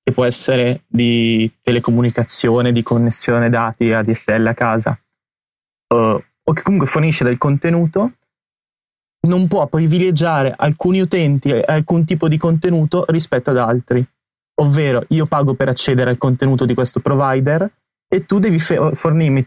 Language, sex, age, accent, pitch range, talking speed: Italian, male, 20-39, native, 125-155 Hz, 145 wpm